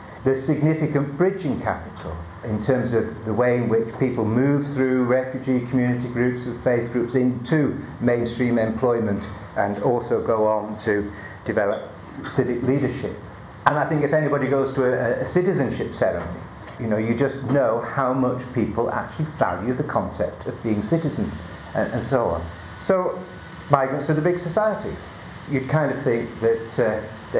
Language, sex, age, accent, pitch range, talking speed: English, male, 50-69, British, 110-145 Hz, 160 wpm